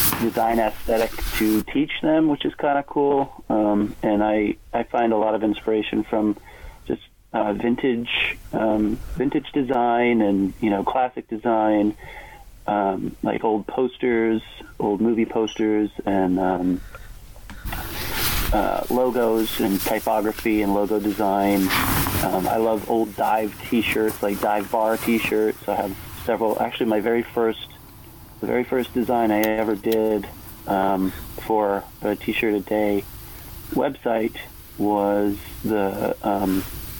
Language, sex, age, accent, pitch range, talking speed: English, male, 40-59, American, 100-110 Hz, 130 wpm